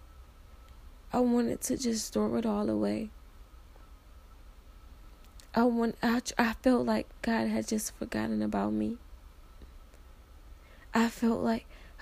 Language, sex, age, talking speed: English, female, 20-39, 110 wpm